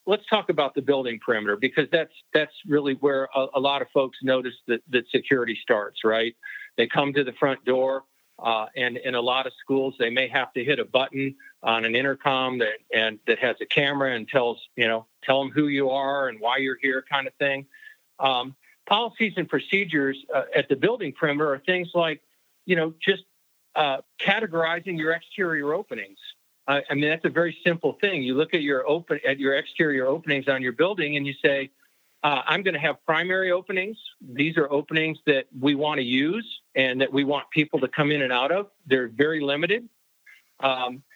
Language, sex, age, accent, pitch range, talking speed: English, male, 50-69, American, 130-160 Hz, 205 wpm